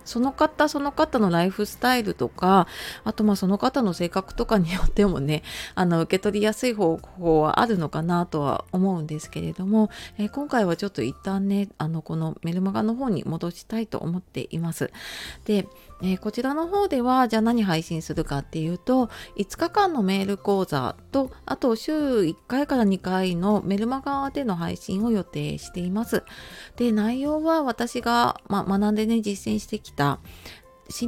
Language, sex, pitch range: Japanese, female, 165-235 Hz